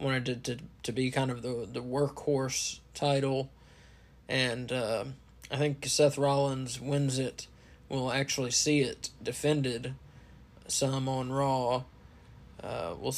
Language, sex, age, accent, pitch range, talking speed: English, male, 20-39, American, 130-140 Hz, 135 wpm